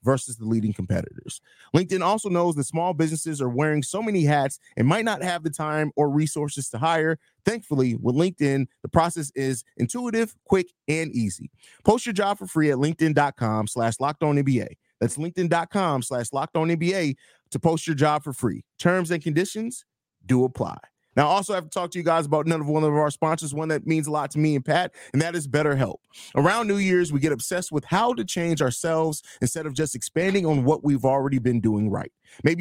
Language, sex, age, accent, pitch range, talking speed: English, male, 30-49, American, 140-170 Hz, 205 wpm